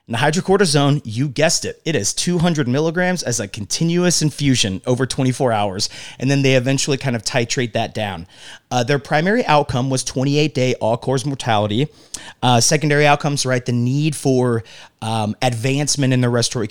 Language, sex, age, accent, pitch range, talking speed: English, male, 30-49, American, 115-145 Hz, 165 wpm